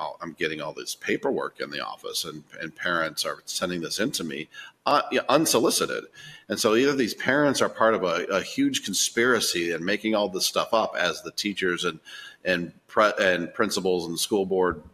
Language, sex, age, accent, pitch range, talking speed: English, male, 40-59, American, 90-105 Hz, 185 wpm